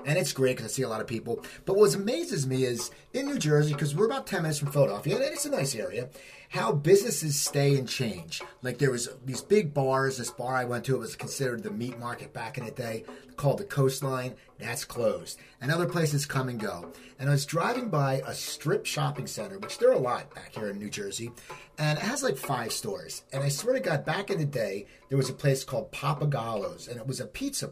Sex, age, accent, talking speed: male, 30-49, American, 245 wpm